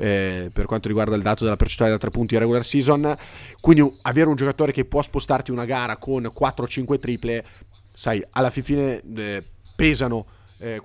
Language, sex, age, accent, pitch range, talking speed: Italian, male, 30-49, native, 100-125 Hz, 170 wpm